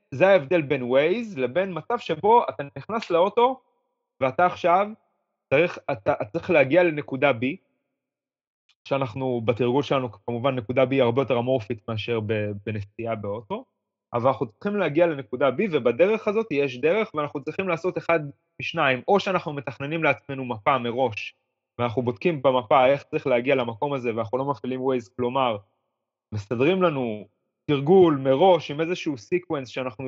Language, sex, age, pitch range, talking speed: Hebrew, male, 20-39, 125-175 Hz, 145 wpm